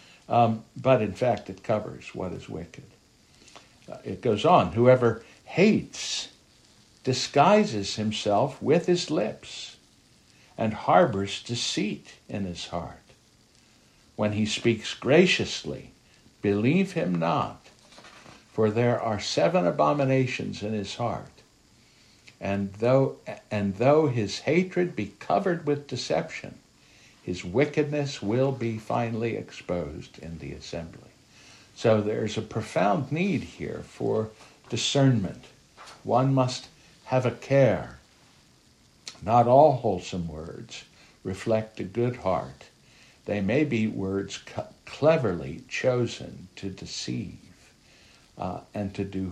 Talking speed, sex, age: 110 wpm, male, 60-79